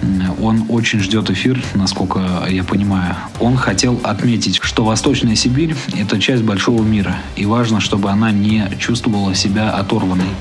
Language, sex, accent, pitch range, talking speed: Russian, male, native, 100-120 Hz, 150 wpm